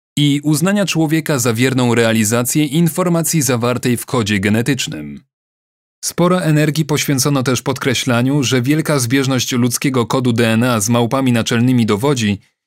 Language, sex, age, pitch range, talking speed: Polish, male, 30-49, 120-150 Hz, 125 wpm